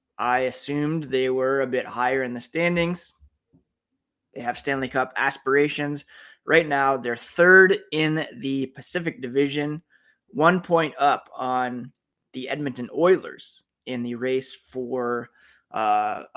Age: 20-39